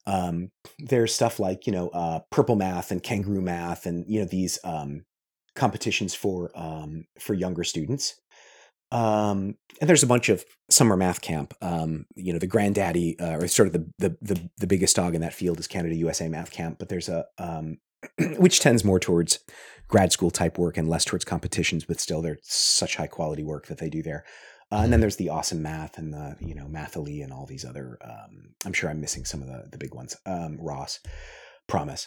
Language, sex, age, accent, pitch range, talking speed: English, male, 30-49, American, 85-115 Hz, 210 wpm